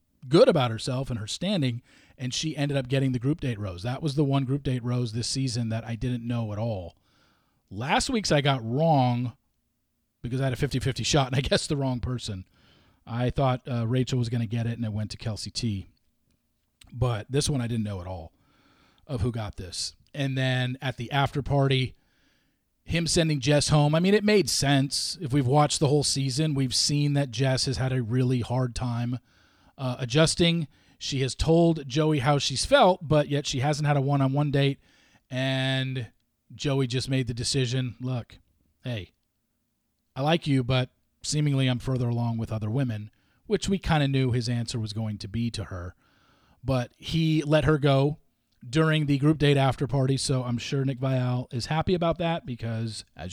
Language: English